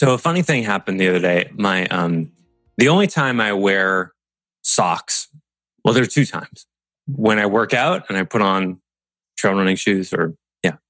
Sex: male